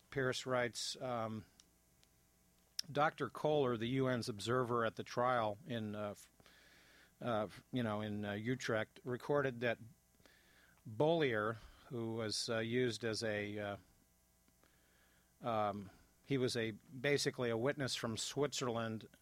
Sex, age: male, 50-69